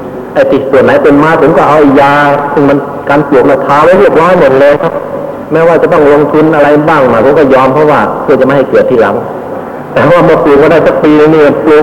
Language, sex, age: Thai, male, 60-79